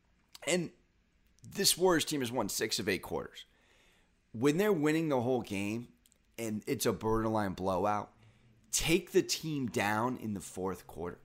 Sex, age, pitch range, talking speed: male, 30-49, 110-145 Hz, 155 wpm